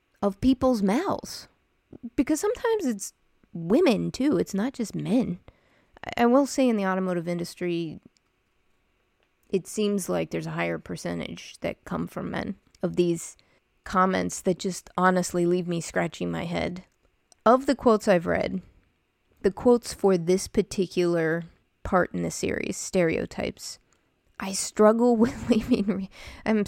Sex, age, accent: female, 20-39, American